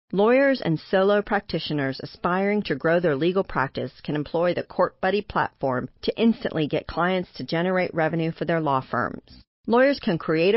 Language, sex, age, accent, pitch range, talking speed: English, female, 40-59, American, 150-195 Hz, 165 wpm